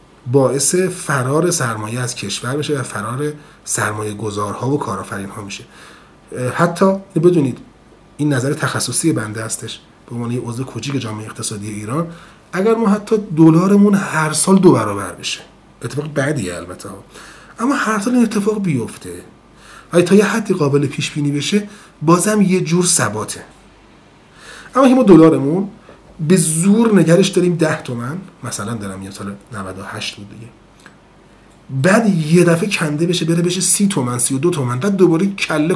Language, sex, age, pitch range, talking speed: Persian, male, 30-49, 120-180 Hz, 150 wpm